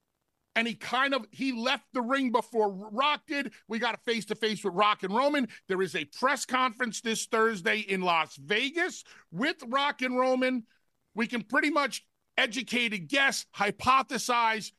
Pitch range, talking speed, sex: 185-240 Hz, 175 wpm, male